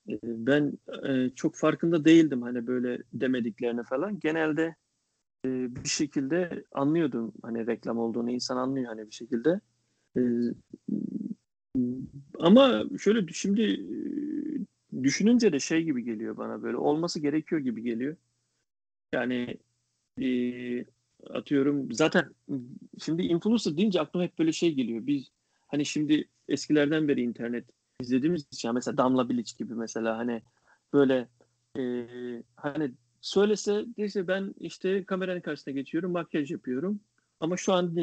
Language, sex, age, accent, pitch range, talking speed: Turkish, male, 40-59, native, 125-180 Hz, 115 wpm